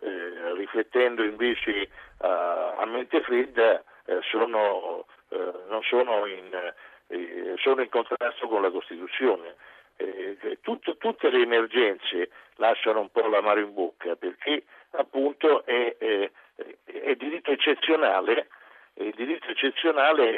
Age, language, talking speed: 60-79, Italian, 125 wpm